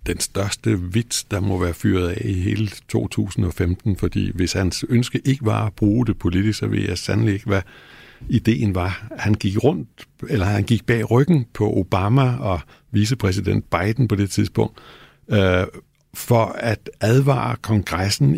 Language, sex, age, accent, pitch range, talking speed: Danish, male, 60-79, native, 100-120 Hz, 165 wpm